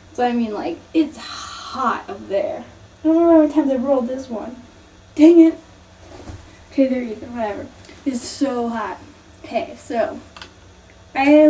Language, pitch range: English, 220-305 Hz